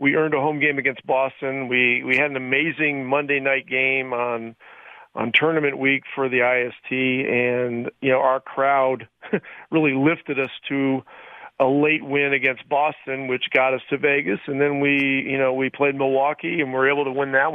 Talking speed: 190 wpm